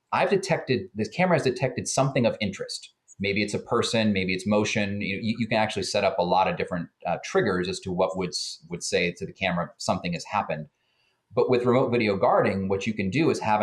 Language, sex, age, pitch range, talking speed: English, male, 30-49, 95-130 Hz, 225 wpm